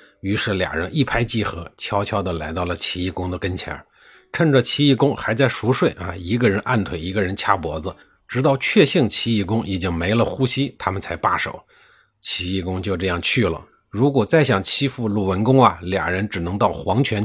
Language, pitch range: Chinese, 95-130 Hz